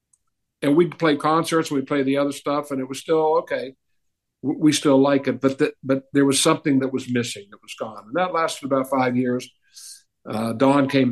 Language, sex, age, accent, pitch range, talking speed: English, male, 60-79, American, 115-140 Hz, 215 wpm